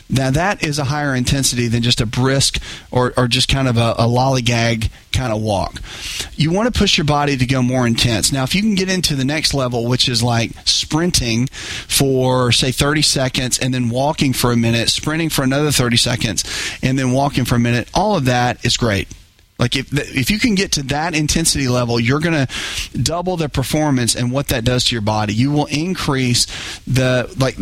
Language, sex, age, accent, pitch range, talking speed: English, male, 40-59, American, 115-140 Hz, 215 wpm